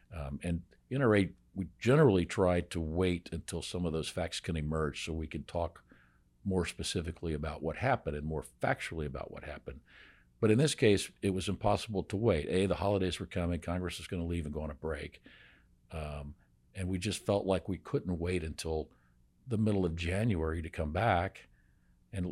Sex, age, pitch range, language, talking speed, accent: male, 50-69, 80-95 Hz, English, 200 wpm, American